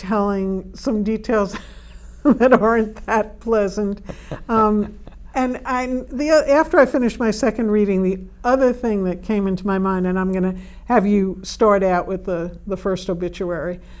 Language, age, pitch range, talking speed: English, 60-79, 190-235 Hz, 150 wpm